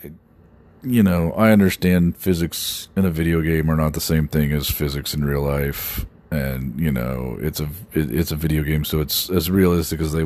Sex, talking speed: male, 195 wpm